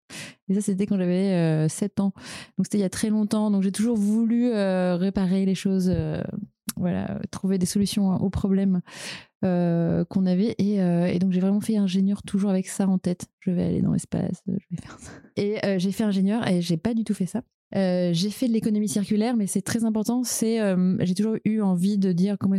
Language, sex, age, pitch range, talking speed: French, female, 20-39, 175-200 Hz, 230 wpm